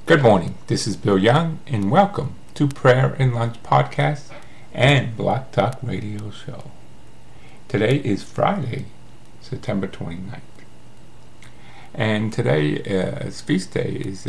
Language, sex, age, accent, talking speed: English, male, 50-69, American, 120 wpm